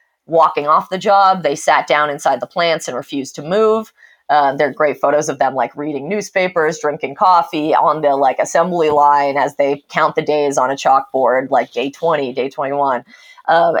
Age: 20-39